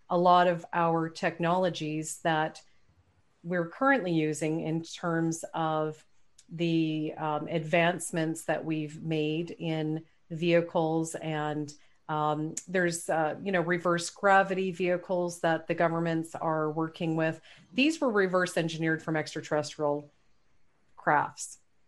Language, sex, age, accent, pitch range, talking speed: English, female, 40-59, American, 160-185 Hz, 115 wpm